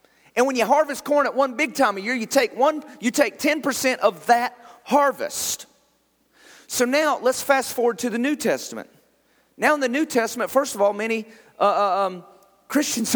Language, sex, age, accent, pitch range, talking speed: English, male, 40-59, American, 205-290 Hz, 180 wpm